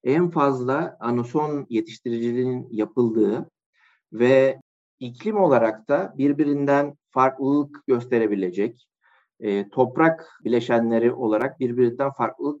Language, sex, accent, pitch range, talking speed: Turkish, male, native, 120-160 Hz, 80 wpm